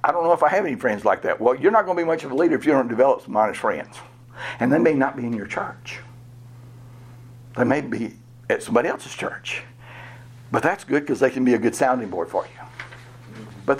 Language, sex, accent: English, male, American